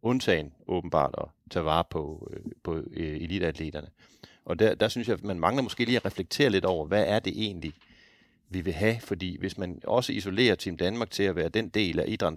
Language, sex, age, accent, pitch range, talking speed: English, male, 30-49, Danish, 85-105 Hz, 215 wpm